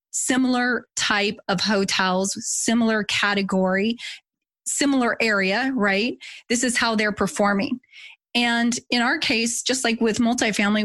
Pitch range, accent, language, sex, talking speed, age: 200-245 Hz, American, English, female, 120 wpm, 20-39